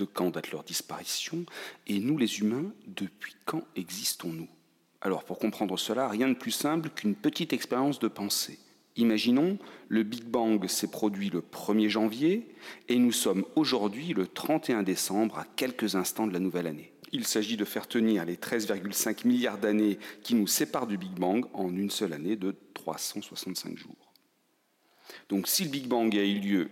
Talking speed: 175 wpm